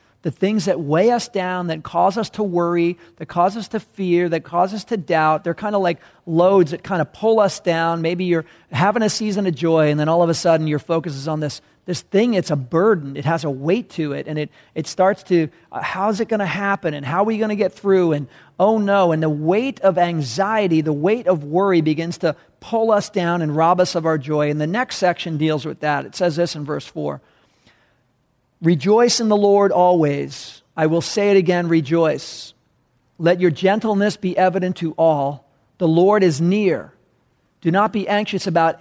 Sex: male